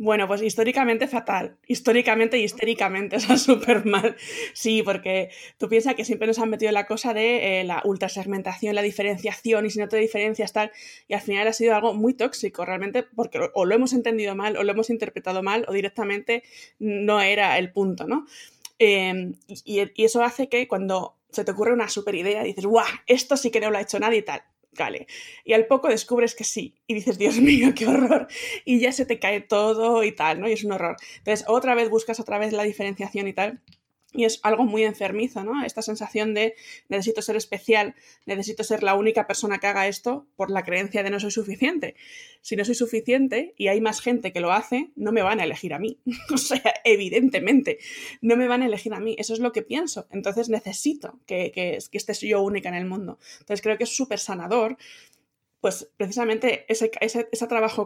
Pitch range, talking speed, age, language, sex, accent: 200-235 Hz, 215 wpm, 20-39, Spanish, female, Spanish